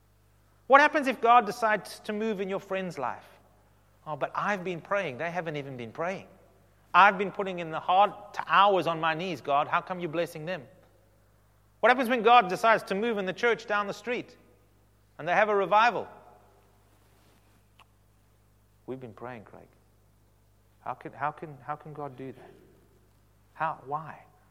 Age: 30-49